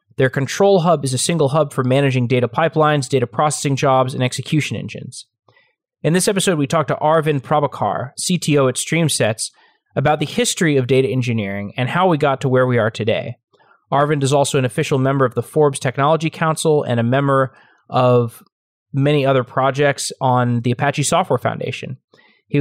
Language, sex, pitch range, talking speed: English, male, 125-155 Hz, 180 wpm